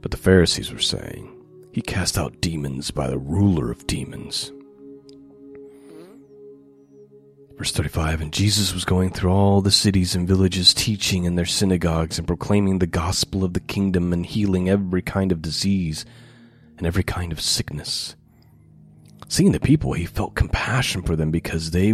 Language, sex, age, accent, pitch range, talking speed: English, male, 30-49, American, 85-115 Hz, 160 wpm